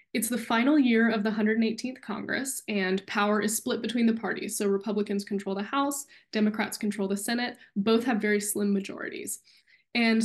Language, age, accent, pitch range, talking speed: English, 10-29, American, 205-235 Hz, 175 wpm